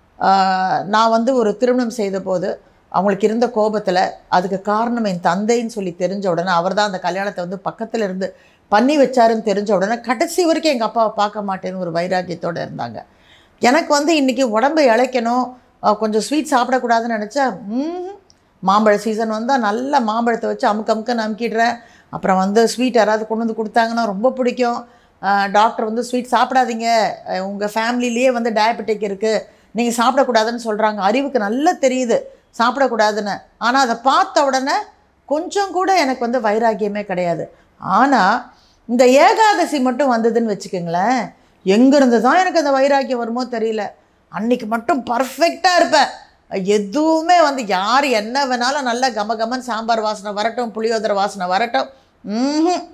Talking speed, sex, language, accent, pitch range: 135 wpm, female, Tamil, native, 210-260 Hz